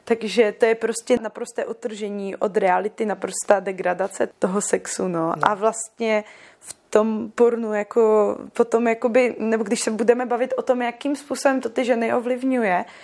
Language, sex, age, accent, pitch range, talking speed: Czech, female, 20-39, native, 205-240 Hz, 155 wpm